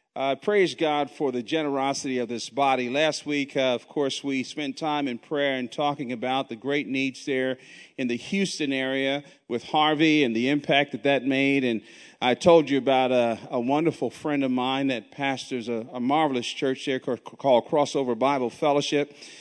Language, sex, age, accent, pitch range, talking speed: English, male, 40-59, American, 120-140 Hz, 185 wpm